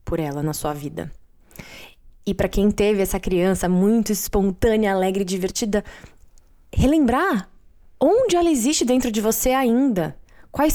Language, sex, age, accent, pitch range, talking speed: Portuguese, female, 20-39, Brazilian, 190-250 Hz, 140 wpm